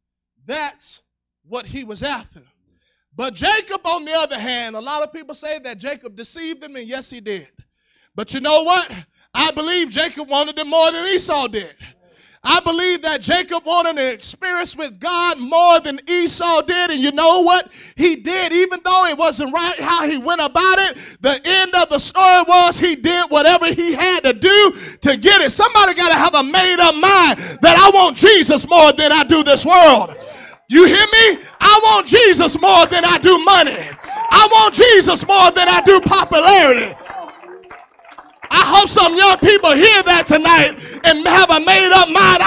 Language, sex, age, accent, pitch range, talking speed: English, male, 30-49, American, 280-370 Hz, 185 wpm